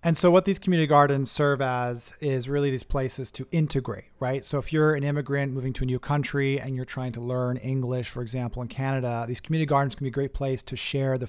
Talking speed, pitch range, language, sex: 245 wpm, 120-140 Hz, English, male